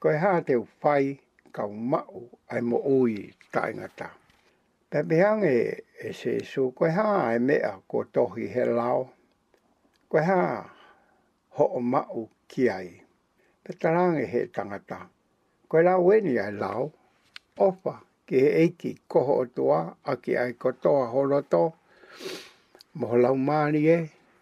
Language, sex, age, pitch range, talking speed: English, male, 60-79, 130-185 Hz, 55 wpm